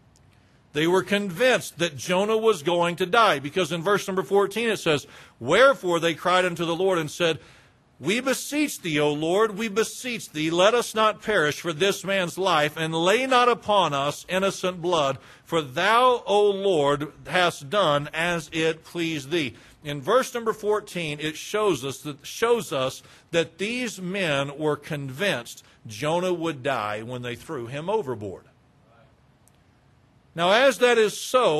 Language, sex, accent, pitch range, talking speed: English, male, American, 145-200 Hz, 160 wpm